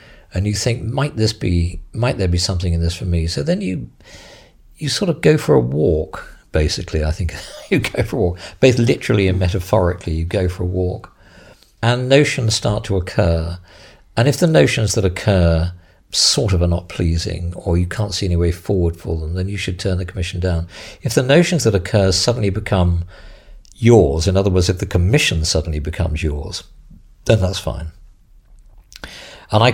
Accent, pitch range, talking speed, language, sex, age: British, 85-105 Hz, 190 wpm, English, male, 50-69